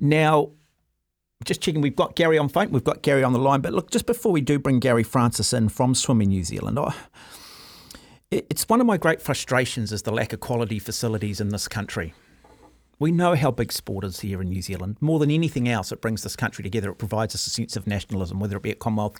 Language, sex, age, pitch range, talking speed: English, male, 40-59, 100-125 Hz, 230 wpm